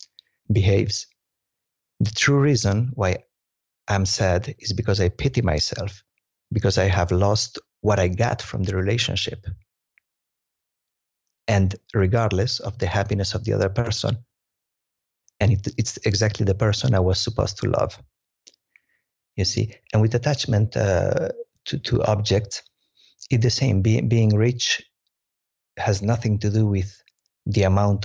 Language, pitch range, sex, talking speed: English, 95-110 Hz, male, 135 wpm